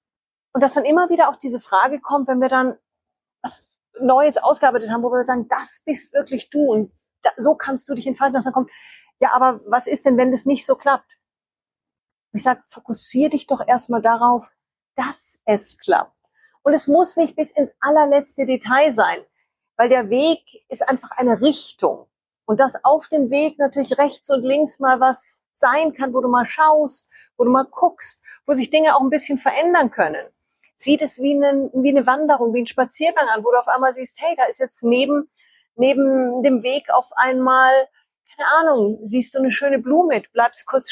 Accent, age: German, 40-59